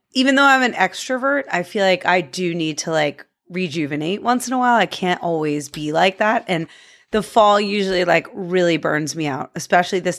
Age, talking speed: 30-49, 205 wpm